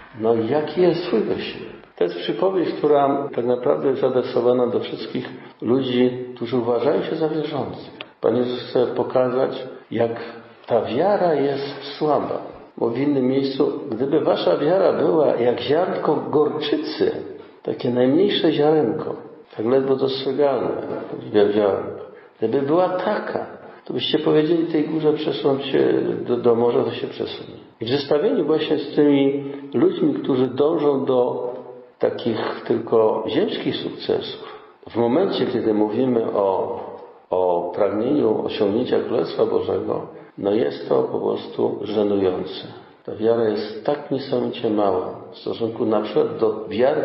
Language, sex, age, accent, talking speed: Polish, male, 50-69, native, 135 wpm